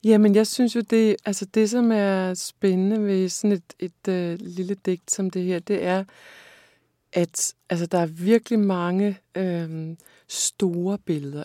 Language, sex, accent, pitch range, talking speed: Danish, female, native, 165-200 Hz, 175 wpm